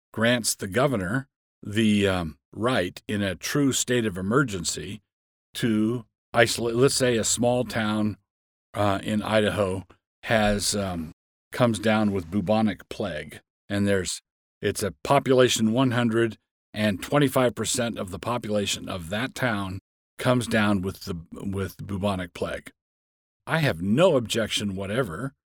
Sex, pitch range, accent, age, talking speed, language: male, 95-125 Hz, American, 50-69, 130 wpm, English